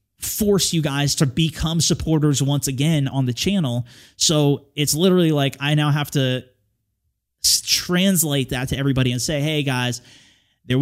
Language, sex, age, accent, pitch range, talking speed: English, male, 20-39, American, 125-155 Hz, 155 wpm